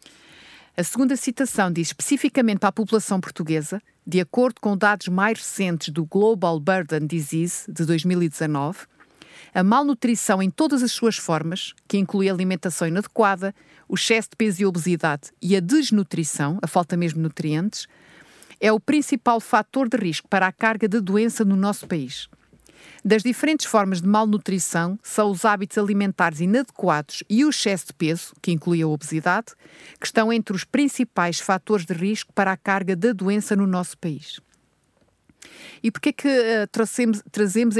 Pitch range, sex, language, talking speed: 175-220 Hz, female, Portuguese, 160 wpm